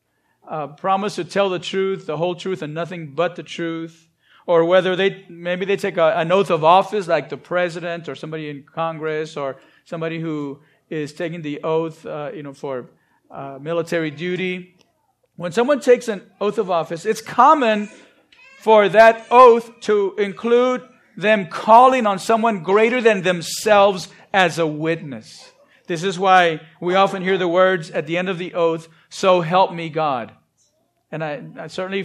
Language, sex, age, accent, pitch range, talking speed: English, male, 40-59, American, 165-210 Hz, 170 wpm